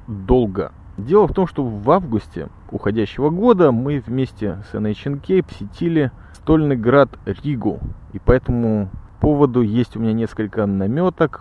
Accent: native